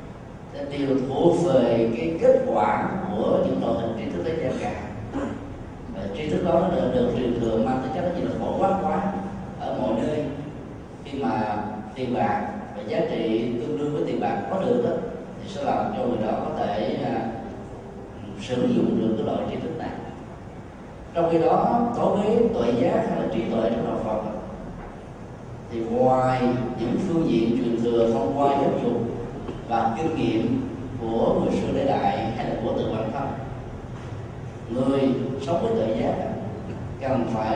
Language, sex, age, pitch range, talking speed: Vietnamese, male, 20-39, 115-170 Hz, 180 wpm